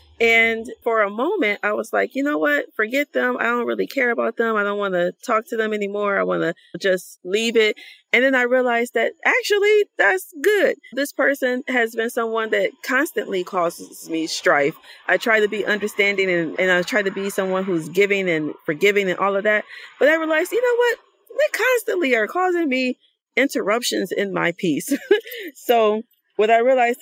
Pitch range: 175-250 Hz